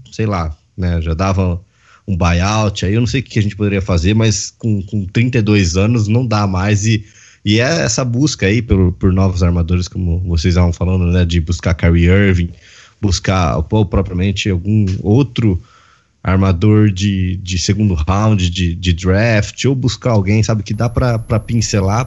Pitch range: 90-115 Hz